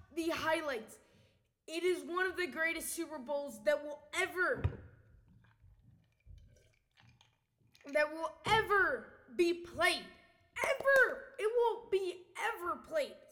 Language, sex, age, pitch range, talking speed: English, female, 20-39, 300-410 Hz, 110 wpm